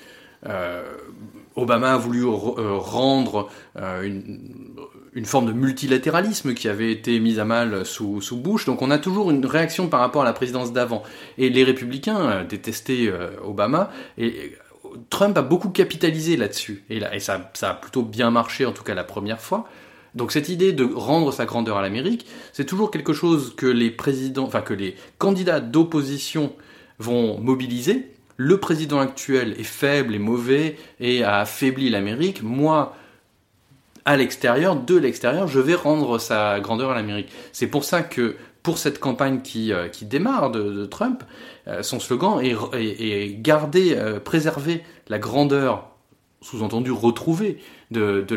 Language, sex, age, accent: French, male, 30-49, French